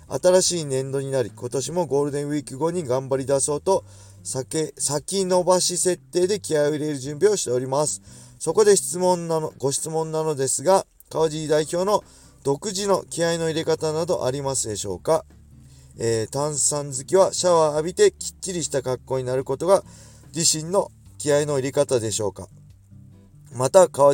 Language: Japanese